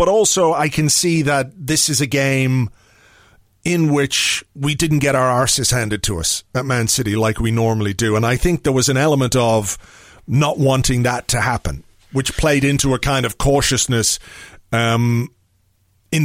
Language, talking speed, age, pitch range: English, 180 wpm, 40-59, 115-140 Hz